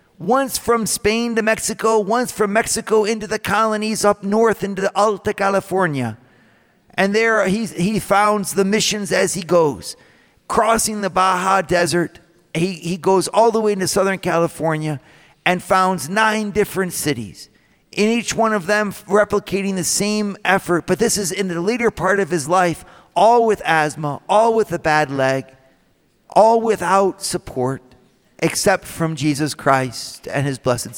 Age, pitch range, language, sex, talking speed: 50-69, 165-215 Hz, English, male, 160 wpm